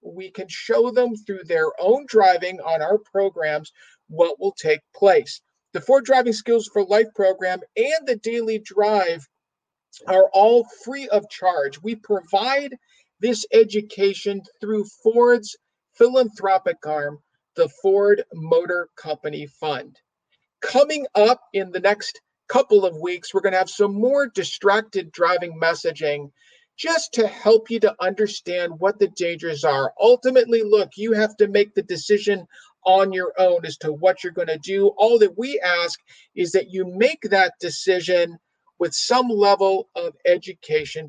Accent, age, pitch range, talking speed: American, 50-69, 180-260 Hz, 150 wpm